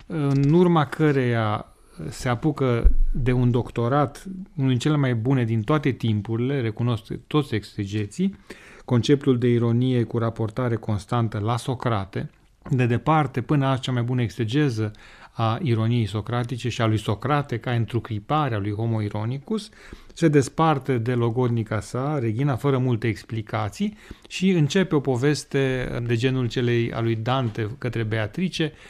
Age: 30-49